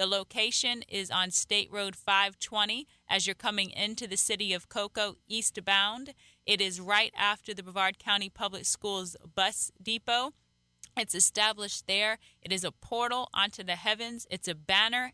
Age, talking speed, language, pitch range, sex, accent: 30-49, 160 wpm, English, 185-220 Hz, female, American